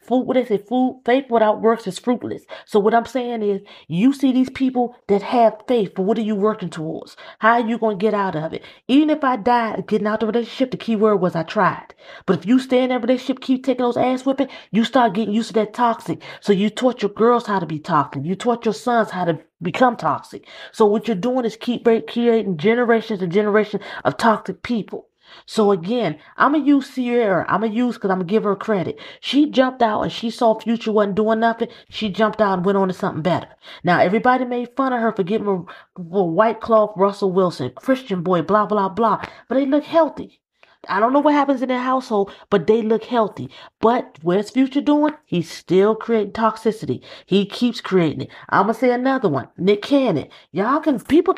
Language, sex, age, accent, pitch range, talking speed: English, female, 40-59, American, 200-245 Hz, 230 wpm